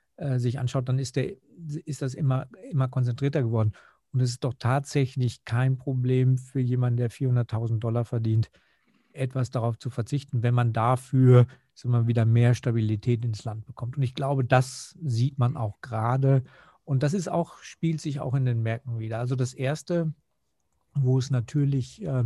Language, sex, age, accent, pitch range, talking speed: German, male, 50-69, German, 120-145 Hz, 170 wpm